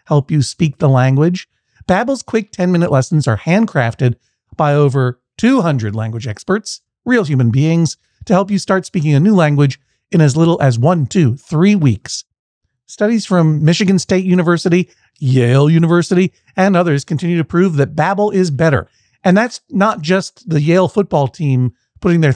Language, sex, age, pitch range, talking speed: English, male, 40-59, 135-190 Hz, 165 wpm